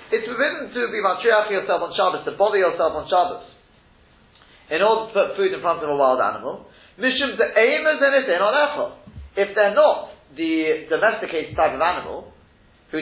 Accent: British